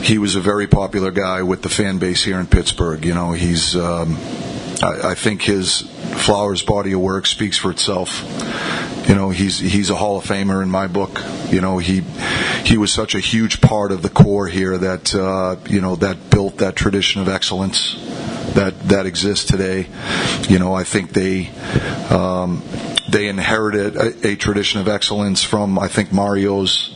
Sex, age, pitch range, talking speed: male, 40-59, 95-105 Hz, 185 wpm